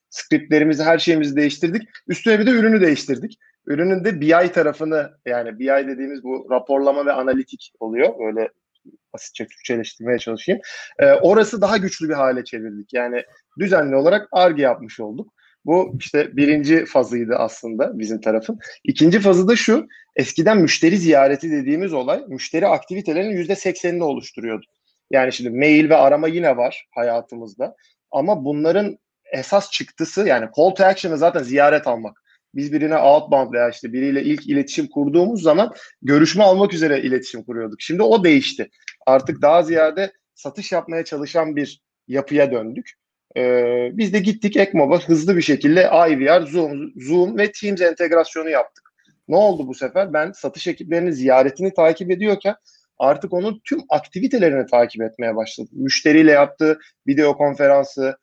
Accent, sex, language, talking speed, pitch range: native, male, Turkish, 145 wpm, 135-195 Hz